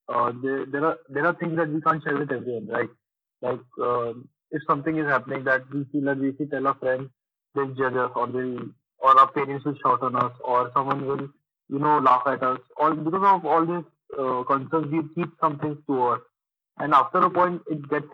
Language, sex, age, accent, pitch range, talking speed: Hindi, male, 20-39, native, 130-155 Hz, 220 wpm